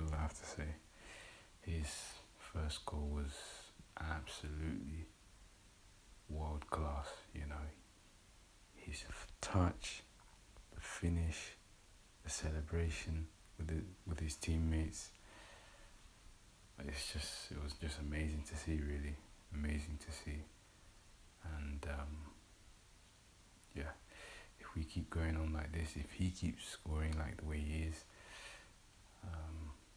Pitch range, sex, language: 75-95 Hz, male, English